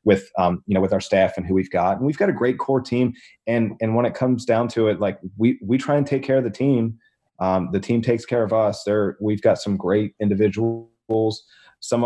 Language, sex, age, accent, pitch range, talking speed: English, male, 30-49, American, 100-120 Hz, 250 wpm